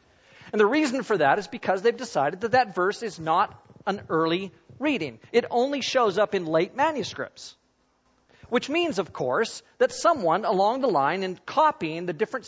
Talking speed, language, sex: 180 wpm, English, male